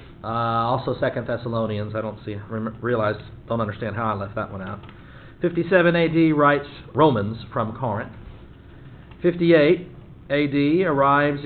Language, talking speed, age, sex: English, 130 wpm, 40-59, male